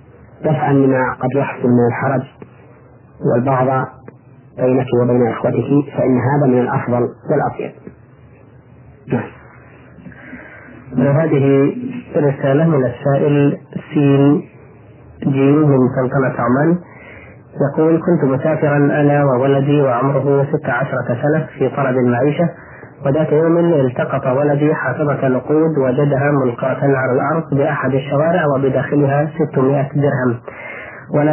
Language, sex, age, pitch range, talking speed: Arabic, male, 40-59, 130-145 Hz, 100 wpm